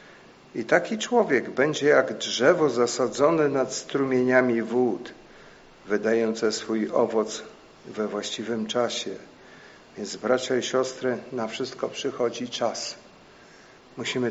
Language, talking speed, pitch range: Polish, 105 wpm, 115-130 Hz